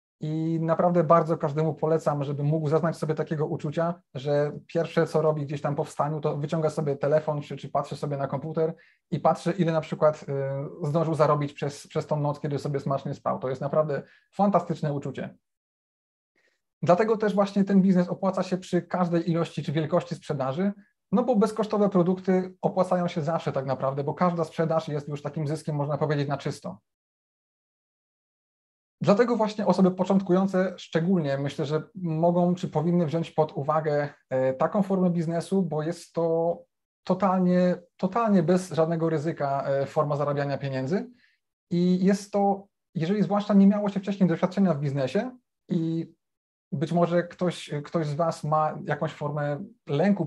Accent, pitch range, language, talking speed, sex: native, 150-180 Hz, Polish, 160 wpm, male